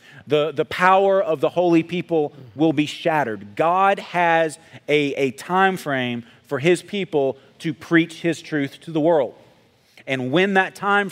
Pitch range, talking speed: 135-175 Hz, 160 wpm